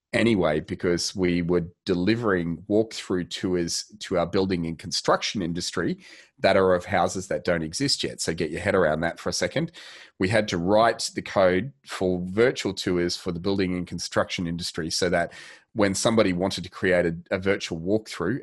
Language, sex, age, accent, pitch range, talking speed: English, male, 30-49, Australian, 85-100 Hz, 180 wpm